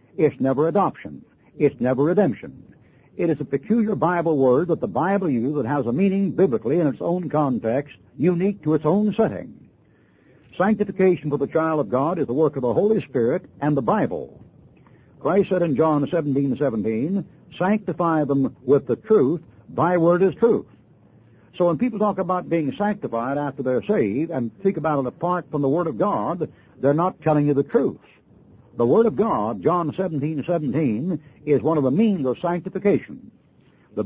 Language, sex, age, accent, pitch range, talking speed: English, male, 60-79, American, 135-180 Hz, 180 wpm